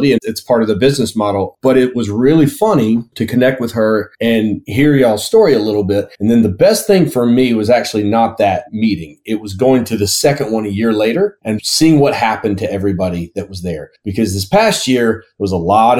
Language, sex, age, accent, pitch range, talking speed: English, male, 30-49, American, 105-135 Hz, 225 wpm